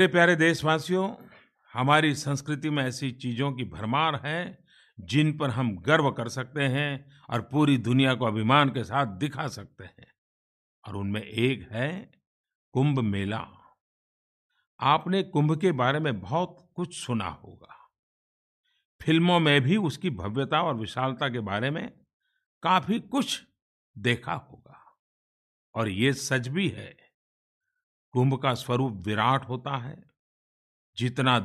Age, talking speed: 50-69, 130 wpm